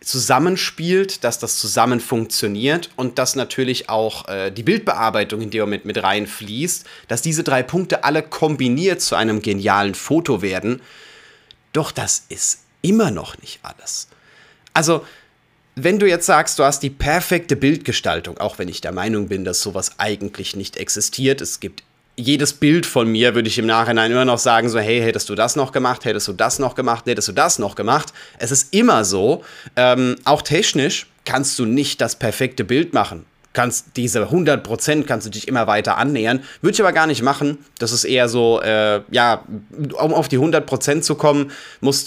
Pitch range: 110-145 Hz